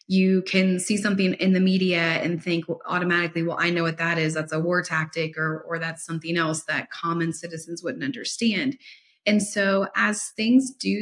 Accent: American